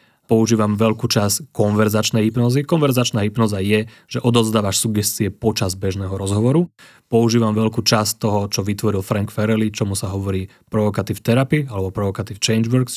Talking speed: 140 wpm